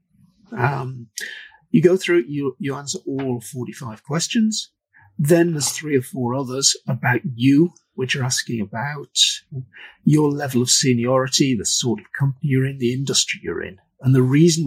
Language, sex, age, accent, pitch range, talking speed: English, male, 50-69, British, 125-155 Hz, 160 wpm